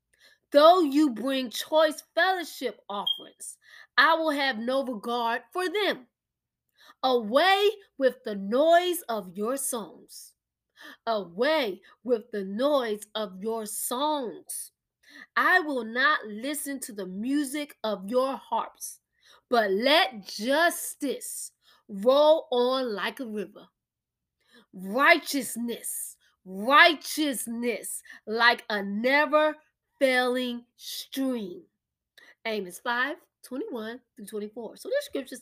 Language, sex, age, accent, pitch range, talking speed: English, female, 20-39, American, 235-315 Hz, 95 wpm